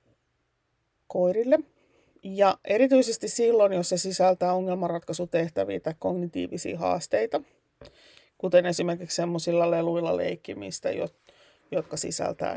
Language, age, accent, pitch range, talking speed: Finnish, 30-49, native, 175-215 Hz, 85 wpm